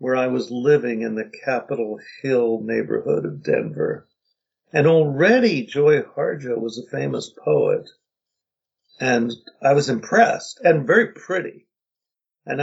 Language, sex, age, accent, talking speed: English, male, 50-69, American, 130 wpm